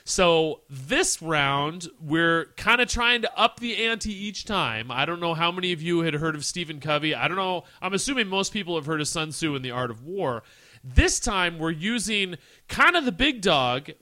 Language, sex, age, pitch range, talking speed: English, male, 30-49, 140-190 Hz, 220 wpm